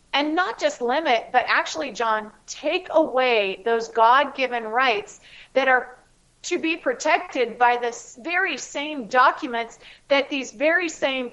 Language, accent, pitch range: English, American, 230-290 Hz